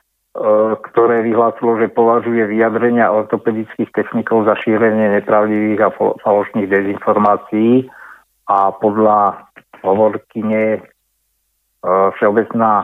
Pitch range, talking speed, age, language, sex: 105-115 Hz, 80 wpm, 50-69, Slovak, male